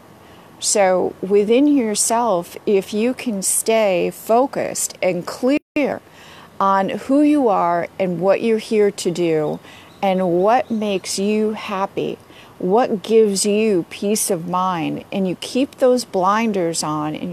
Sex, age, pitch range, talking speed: female, 40-59, 185-225 Hz, 130 wpm